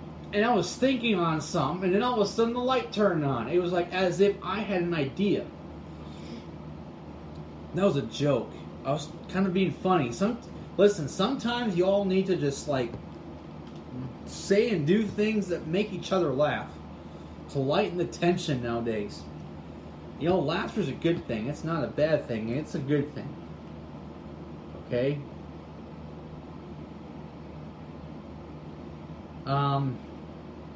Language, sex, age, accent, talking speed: English, male, 30-49, American, 145 wpm